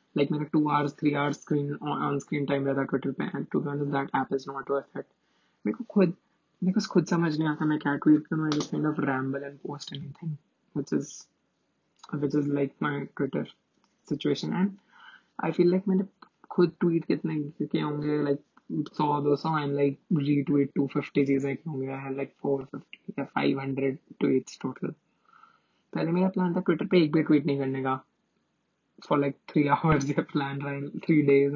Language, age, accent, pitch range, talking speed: Hindi, 20-39, native, 140-160 Hz, 30 wpm